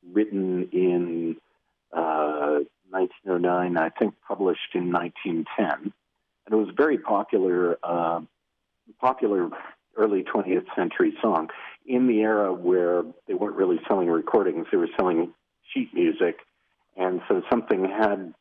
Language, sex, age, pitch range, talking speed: English, male, 50-69, 85-110 Hz, 125 wpm